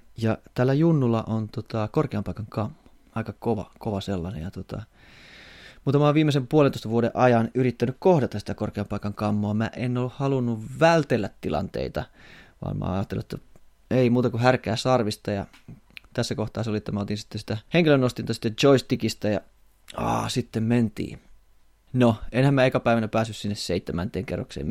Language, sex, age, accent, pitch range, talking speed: Finnish, male, 30-49, native, 105-130 Hz, 165 wpm